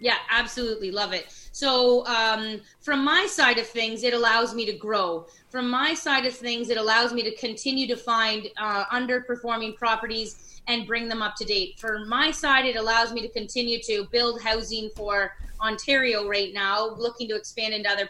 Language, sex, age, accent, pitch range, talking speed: English, female, 20-39, American, 220-265 Hz, 190 wpm